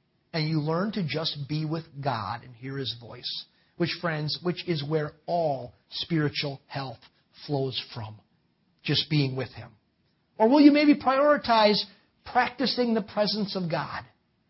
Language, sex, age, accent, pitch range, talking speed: English, male, 40-59, American, 160-220 Hz, 150 wpm